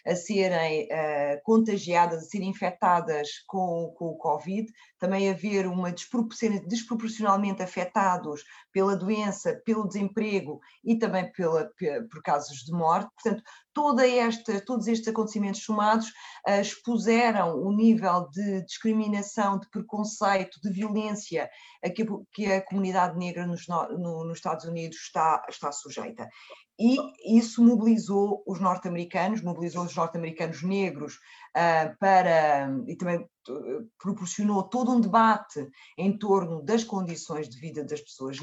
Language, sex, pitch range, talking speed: Portuguese, female, 165-210 Hz, 135 wpm